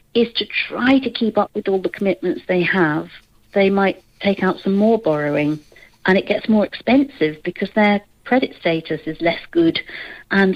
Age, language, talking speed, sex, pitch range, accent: 50-69, English, 180 wpm, female, 160-200 Hz, British